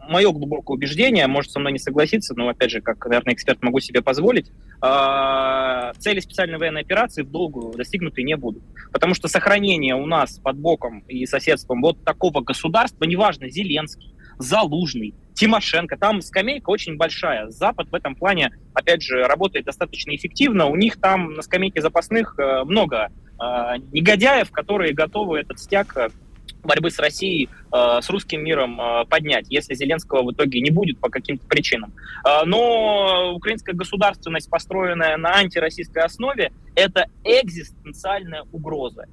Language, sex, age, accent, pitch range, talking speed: Russian, male, 20-39, native, 135-190 Hz, 145 wpm